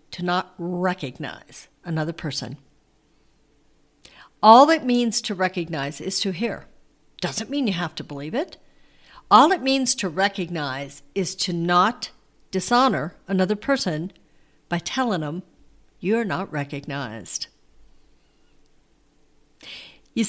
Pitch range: 150-220 Hz